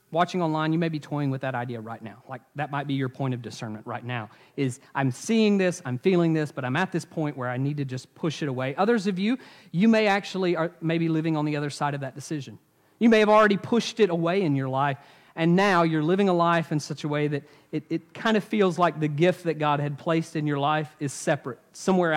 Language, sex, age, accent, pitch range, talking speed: English, male, 40-59, American, 135-175 Hz, 260 wpm